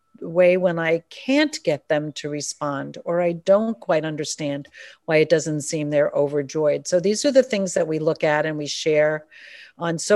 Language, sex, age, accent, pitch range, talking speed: English, female, 50-69, American, 150-185 Hz, 195 wpm